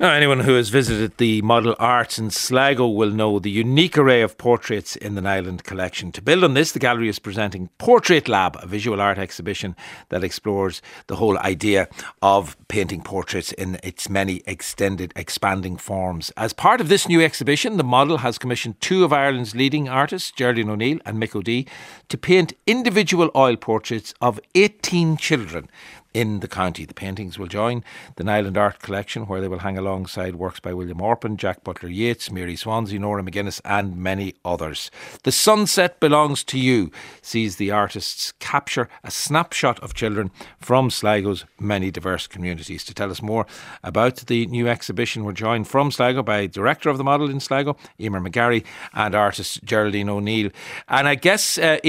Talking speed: 175 wpm